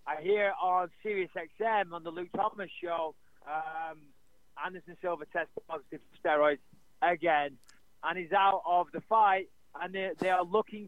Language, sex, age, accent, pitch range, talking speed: English, male, 30-49, British, 155-190 Hz, 155 wpm